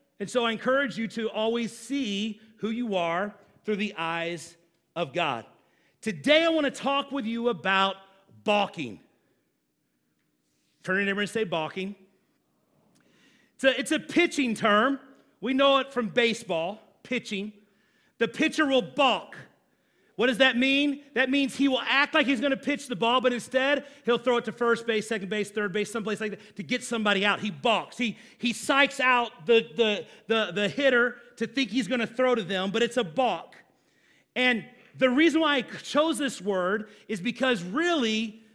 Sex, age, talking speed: male, 40-59, 180 wpm